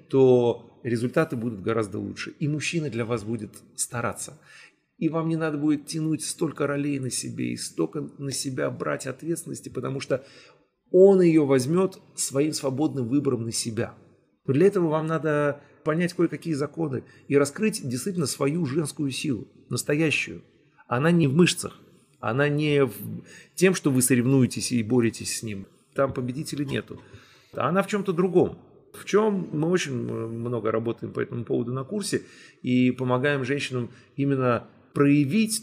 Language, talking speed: Russian, 150 wpm